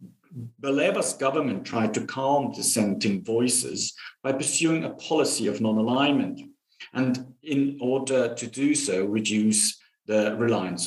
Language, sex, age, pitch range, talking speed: English, male, 50-69, 115-160 Hz, 125 wpm